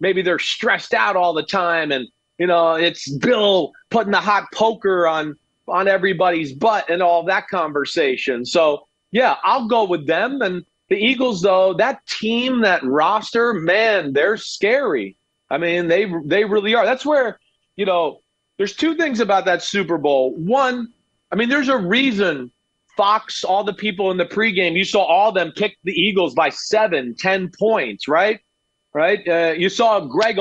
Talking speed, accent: 175 wpm, American